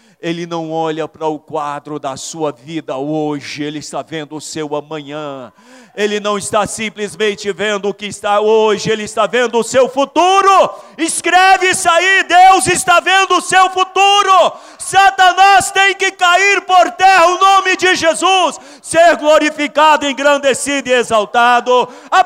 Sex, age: male, 40-59